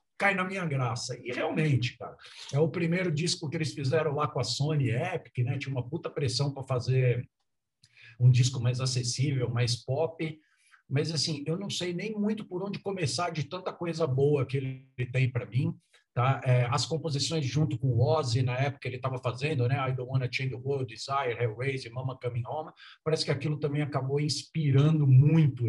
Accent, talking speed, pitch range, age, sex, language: Brazilian, 195 wpm, 125-155 Hz, 50-69, male, Portuguese